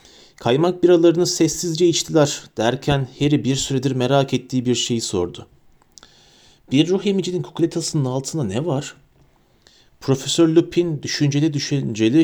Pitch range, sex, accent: 120-160 Hz, male, native